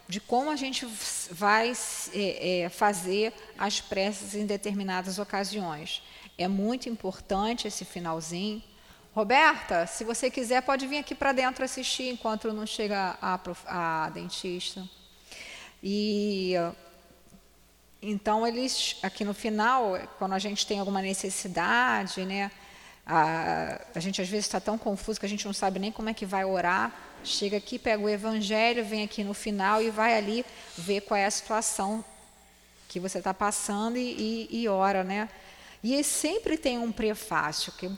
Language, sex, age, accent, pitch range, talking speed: Portuguese, female, 20-39, Brazilian, 190-230 Hz, 155 wpm